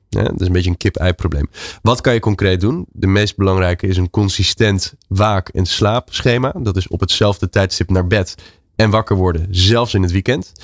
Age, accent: 20-39, Dutch